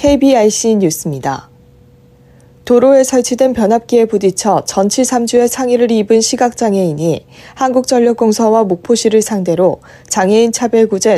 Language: Korean